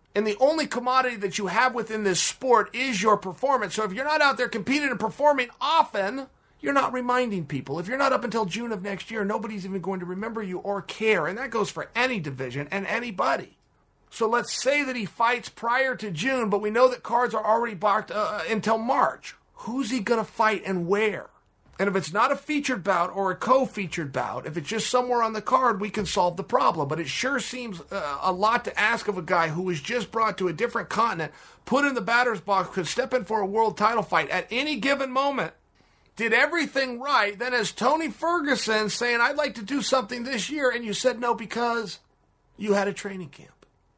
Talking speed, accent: 225 wpm, American